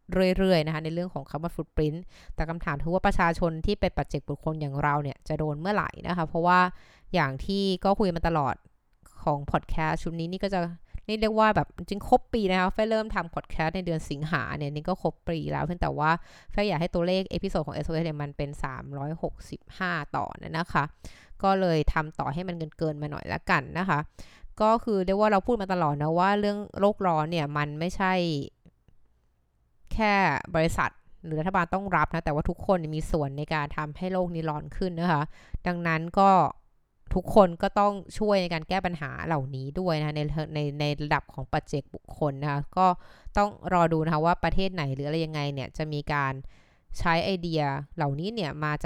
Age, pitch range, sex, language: 20-39, 150-185 Hz, female, Thai